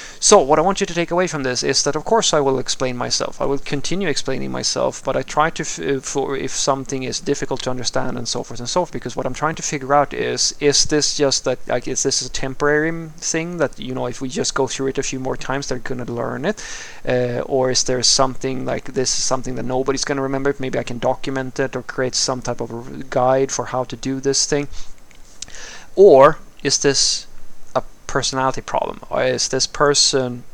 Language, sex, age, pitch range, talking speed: English, male, 20-39, 125-140 Hz, 230 wpm